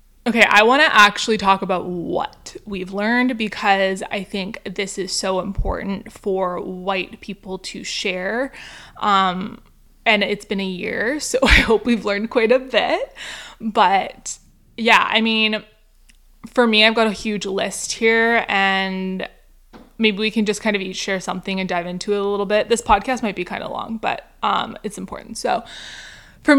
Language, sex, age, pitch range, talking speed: English, female, 20-39, 190-225 Hz, 175 wpm